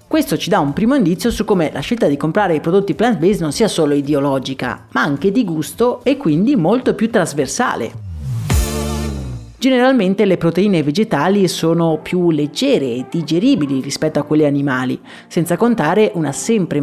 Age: 30-49